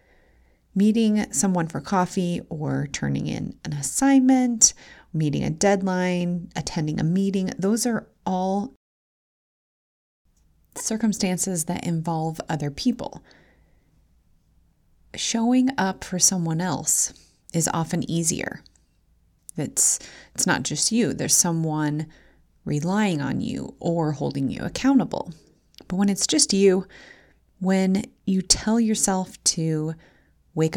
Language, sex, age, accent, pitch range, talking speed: English, female, 30-49, American, 150-195 Hz, 110 wpm